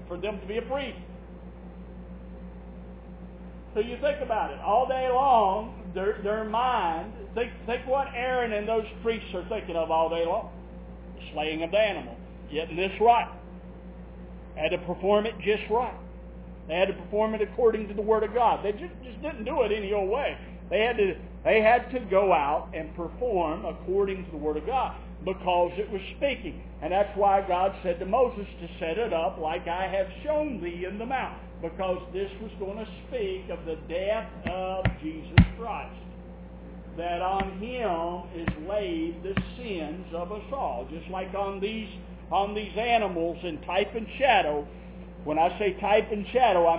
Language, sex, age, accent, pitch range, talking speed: English, male, 50-69, American, 165-215 Hz, 185 wpm